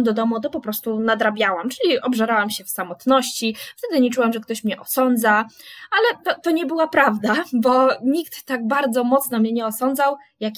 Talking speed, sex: 185 wpm, female